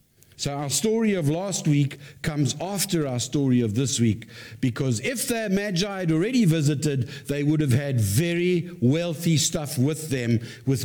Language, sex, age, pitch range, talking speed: English, male, 60-79, 120-170 Hz, 165 wpm